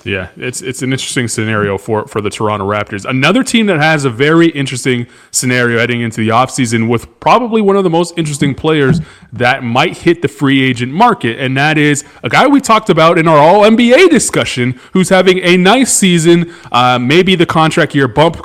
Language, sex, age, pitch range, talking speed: English, male, 20-39, 120-160 Hz, 200 wpm